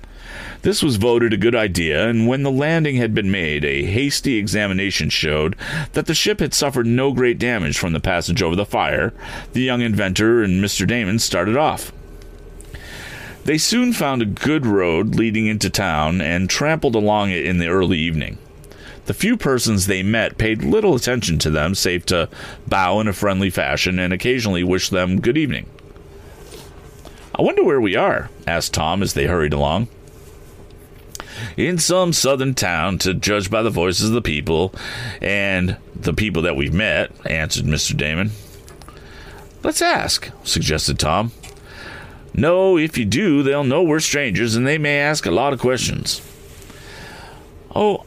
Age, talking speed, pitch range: 40-59, 165 wpm, 90-130 Hz